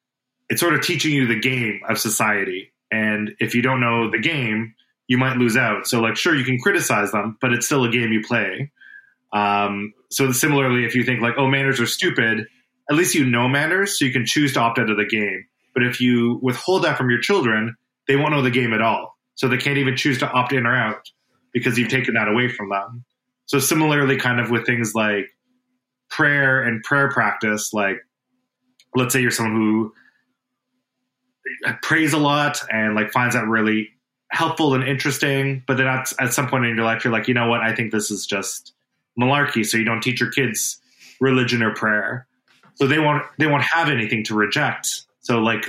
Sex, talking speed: male, 210 wpm